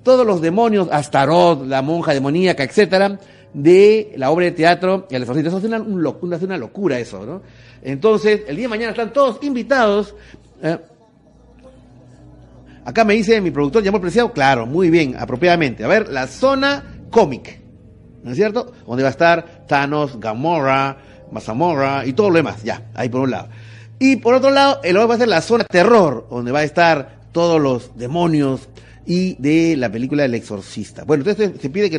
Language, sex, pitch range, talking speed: Spanish, male, 135-215 Hz, 190 wpm